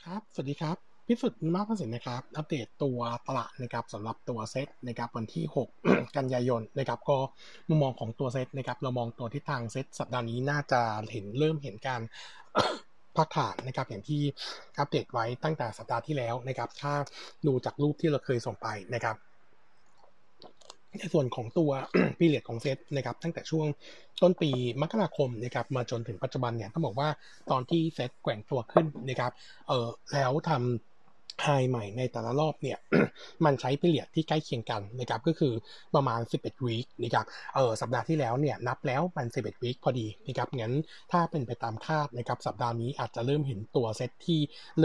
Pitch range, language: 120-150 Hz, Thai